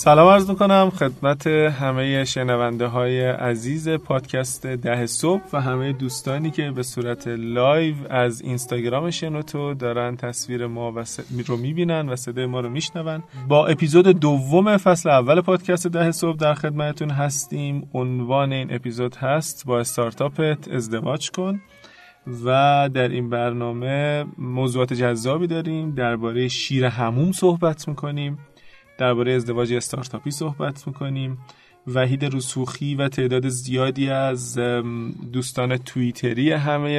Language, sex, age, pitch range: Persian, male, 30-49, 125-155 Hz